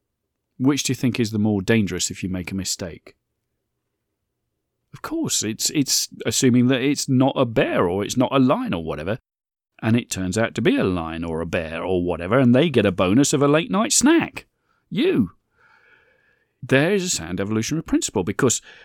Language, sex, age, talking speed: English, male, 40-59, 190 wpm